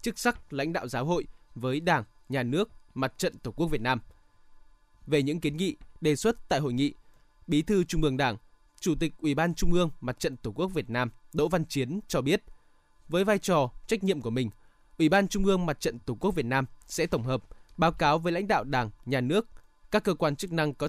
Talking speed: 235 wpm